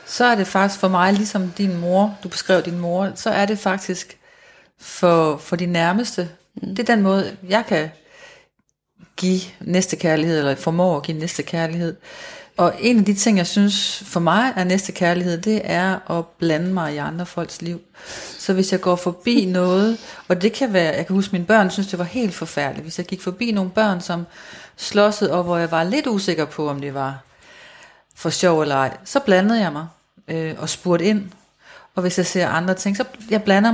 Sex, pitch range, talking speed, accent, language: female, 170-205 Hz, 205 wpm, native, Danish